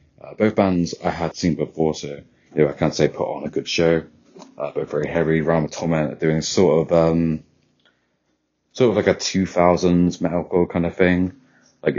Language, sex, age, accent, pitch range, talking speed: English, male, 20-39, British, 75-85 Hz, 190 wpm